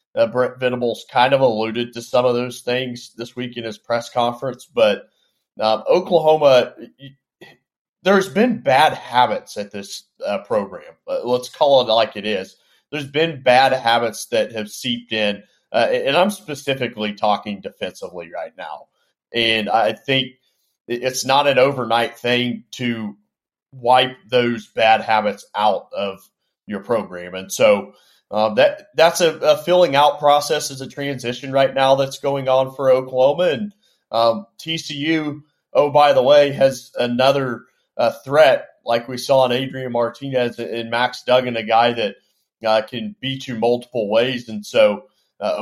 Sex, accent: male, American